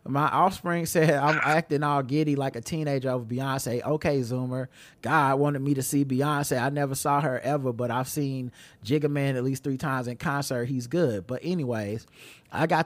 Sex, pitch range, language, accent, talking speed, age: male, 125-150 Hz, English, American, 195 wpm, 30-49